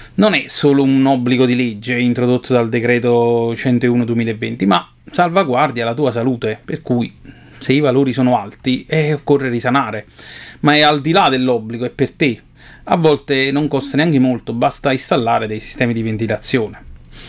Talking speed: 165 wpm